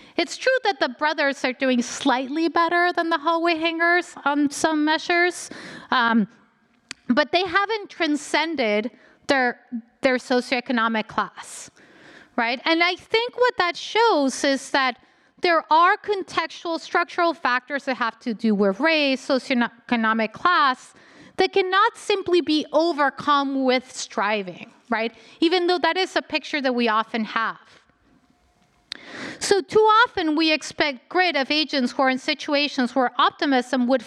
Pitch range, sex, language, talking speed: 250-340 Hz, female, English, 140 wpm